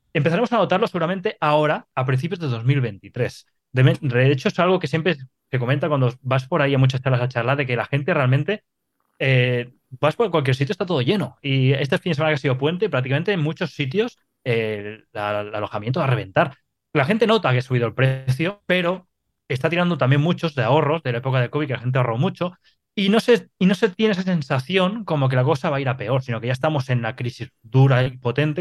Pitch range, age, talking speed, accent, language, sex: 125-165 Hz, 20-39, 235 wpm, Spanish, Spanish, male